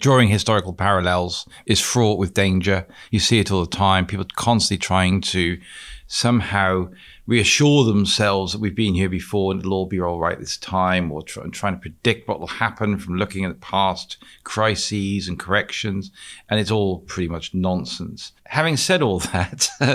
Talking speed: 180 wpm